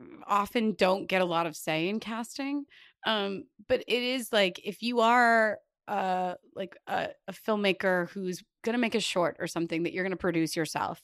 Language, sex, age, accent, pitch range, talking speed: English, female, 20-39, American, 170-220 Hz, 185 wpm